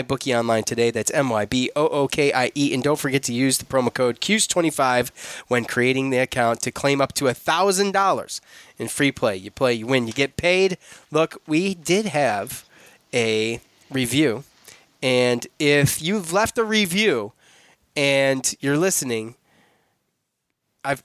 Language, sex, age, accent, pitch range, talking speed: English, male, 20-39, American, 125-155 Hz, 140 wpm